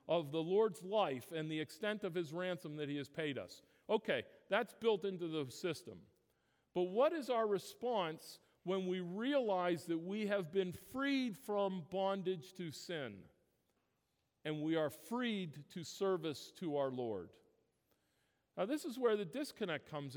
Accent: American